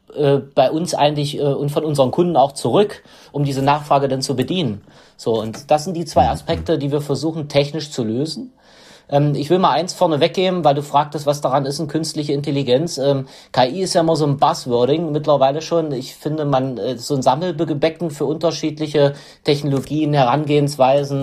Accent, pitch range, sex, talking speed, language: German, 135-165 Hz, male, 190 wpm, German